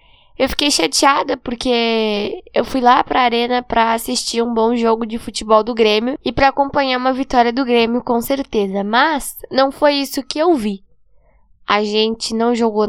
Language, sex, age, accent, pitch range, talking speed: Portuguese, female, 10-29, Brazilian, 225-270 Hz, 175 wpm